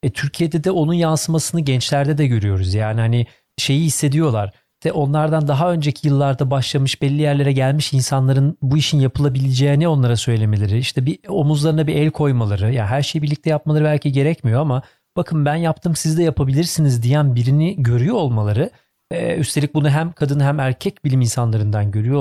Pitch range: 125-155 Hz